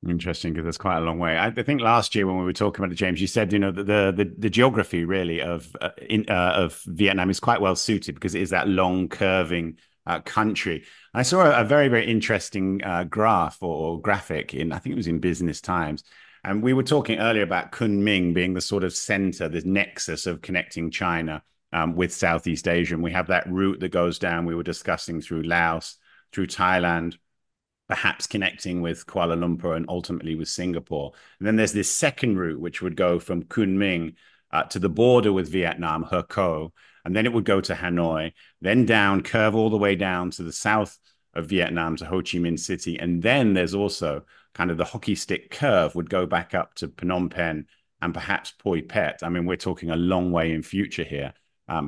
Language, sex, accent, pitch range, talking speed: English, male, British, 85-100 Hz, 210 wpm